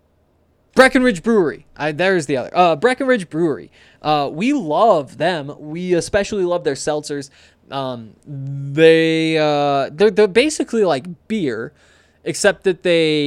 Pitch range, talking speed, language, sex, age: 140-190 Hz, 120 wpm, English, male, 20-39